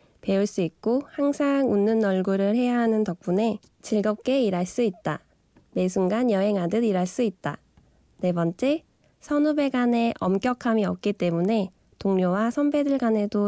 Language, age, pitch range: Korean, 20-39, 190-240 Hz